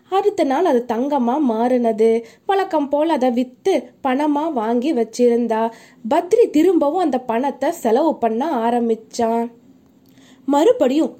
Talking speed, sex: 105 wpm, female